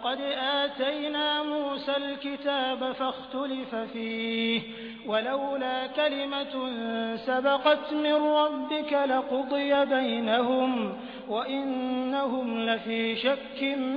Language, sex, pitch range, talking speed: Hindi, male, 250-290 Hz, 75 wpm